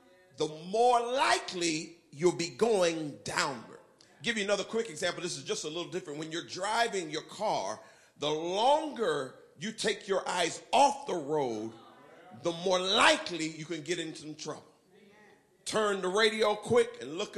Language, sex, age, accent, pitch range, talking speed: English, male, 40-59, American, 175-235 Hz, 165 wpm